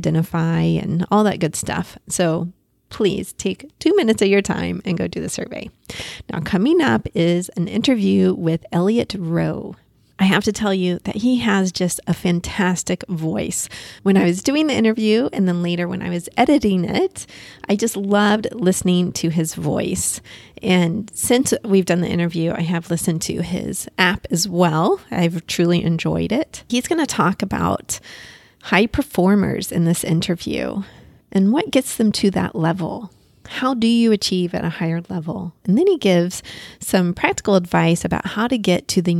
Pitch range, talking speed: 175-210 Hz, 180 wpm